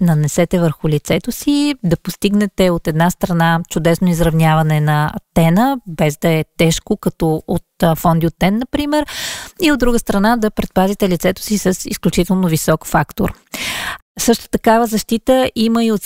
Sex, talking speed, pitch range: female, 155 wpm, 170-210 Hz